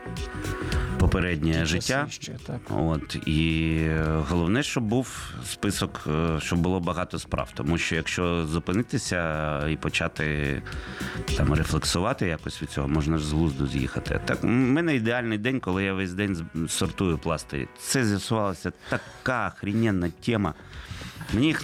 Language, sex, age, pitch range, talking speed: Ukrainian, male, 30-49, 85-110 Hz, 125 wpm